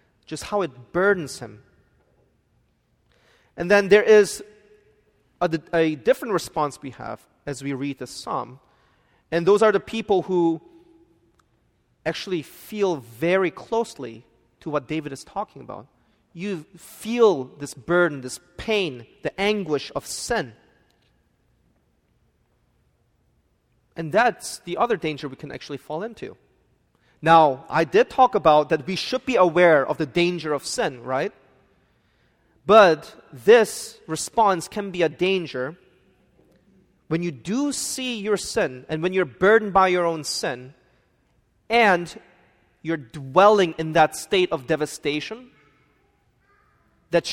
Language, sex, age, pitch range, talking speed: English, male, 30-49, 145-205 Hz, 130 wpm